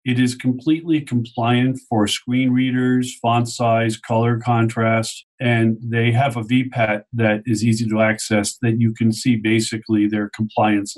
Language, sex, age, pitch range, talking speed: English, male, 50-69, 110-130 Hz, 155 wpm